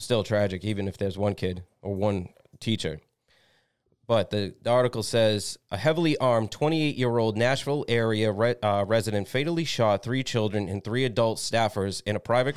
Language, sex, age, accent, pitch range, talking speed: English, male, 30-49, American, 105-125 Hz, 160 wpm